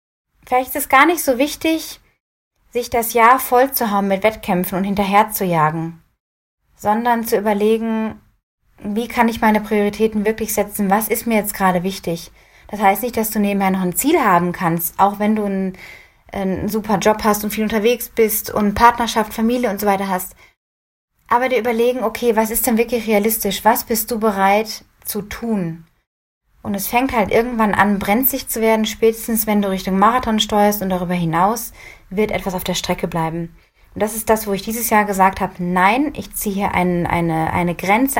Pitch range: 195-230 Hz